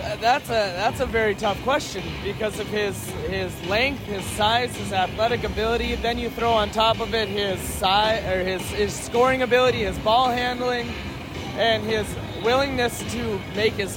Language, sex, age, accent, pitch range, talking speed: English, male, 20-39, American, 175-225 Hz, 170 wpm